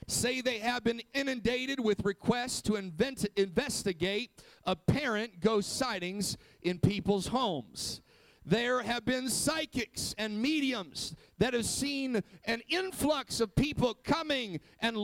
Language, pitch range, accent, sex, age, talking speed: English, 210-255 Hz, American, male, 50-69, 120 wpm